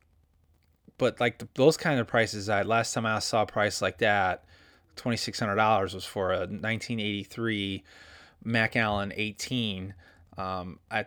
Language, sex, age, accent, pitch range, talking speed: English, male, 20-39, American, 95-125 Hz, 135 wpm